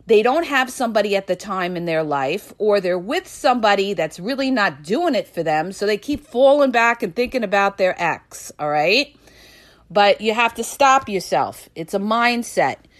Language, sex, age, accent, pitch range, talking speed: English, female, 40-59, American, 200-295 Hz, 195 wpm